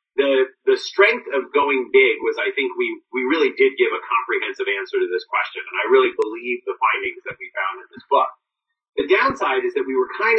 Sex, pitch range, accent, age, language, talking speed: male, 370-410 Hz, American, 30-49, English, 225 wpm